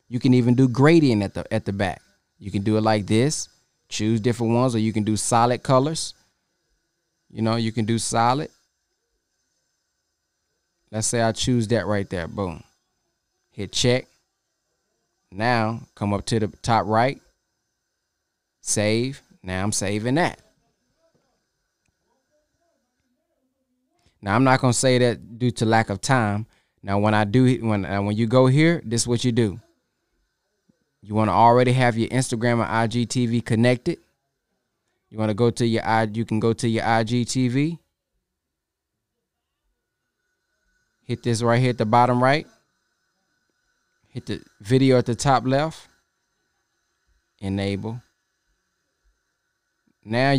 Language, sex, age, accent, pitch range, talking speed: English, male, 20-39, American, 110-140 Hz, 140 wpm